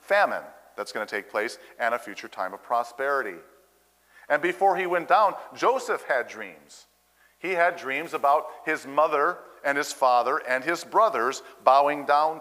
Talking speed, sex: 165 wpm, male